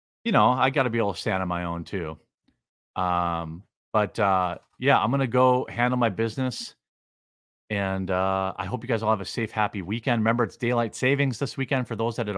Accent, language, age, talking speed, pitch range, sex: American, English, 40-59, 225 wpm, 115-160 Hz, male